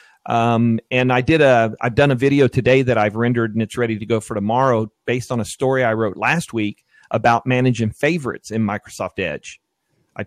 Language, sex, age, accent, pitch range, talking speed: English, male, 40-59, American, 110-135 Hz, 205 wpm